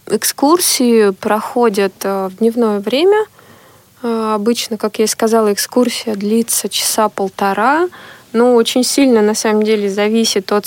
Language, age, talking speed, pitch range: Russian, 20-39, 125 wpm, 205-235 Hz